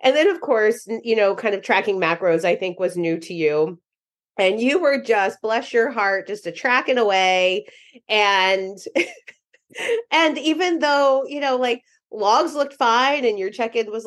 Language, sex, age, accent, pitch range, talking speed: English, female, 30-49, American, 200-285 Hz, 185 wpm